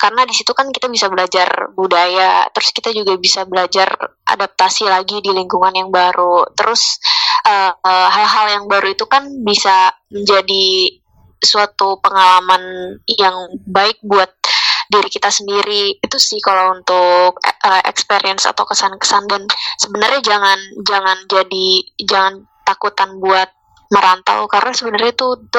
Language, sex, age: Indonesian, female, 10-29